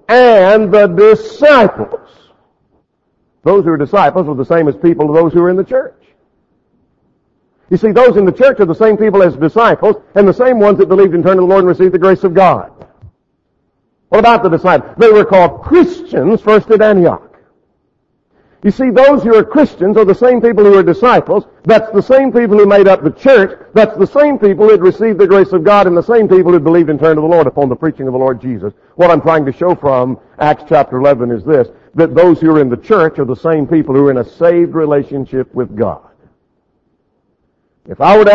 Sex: male